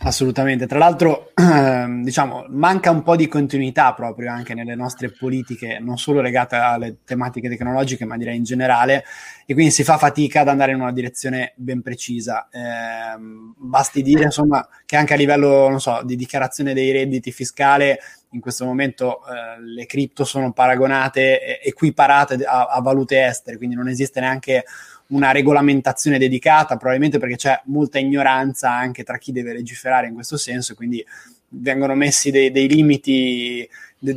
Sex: male